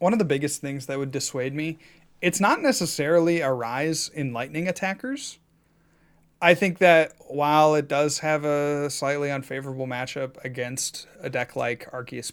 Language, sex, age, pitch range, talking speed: English, male, 30-49, 125-165 Hz, 160 wpm